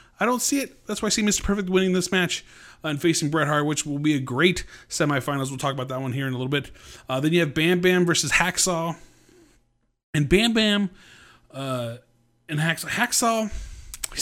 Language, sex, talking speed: English, male, 205 wpm